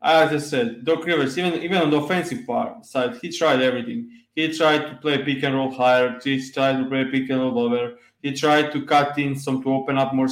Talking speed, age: 240 wpm, 20-39